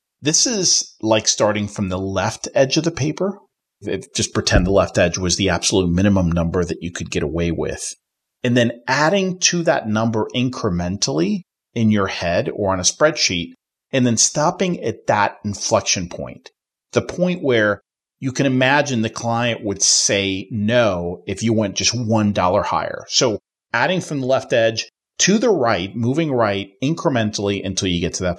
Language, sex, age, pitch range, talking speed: English, male, 40-59, 100-150 Hz, 175 wpm